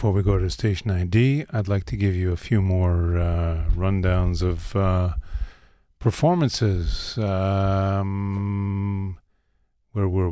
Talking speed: 130 wpm